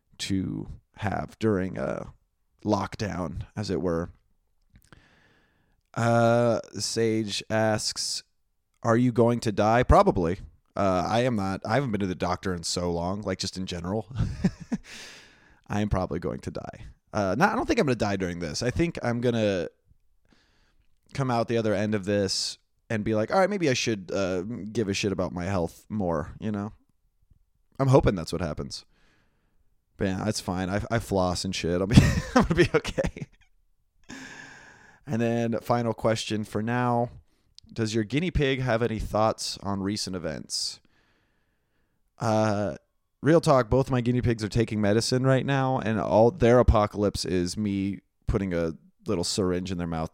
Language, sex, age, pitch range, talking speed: English, male, 30-49, 95-115 Hz, 165 wpm